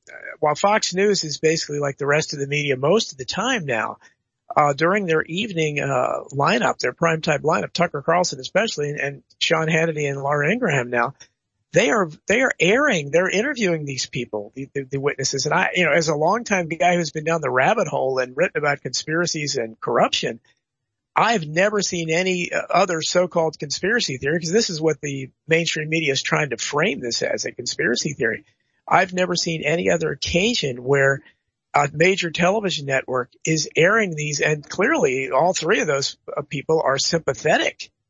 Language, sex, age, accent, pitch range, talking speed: English, male, 50-69, American, 140-175 Hz, 185 wpm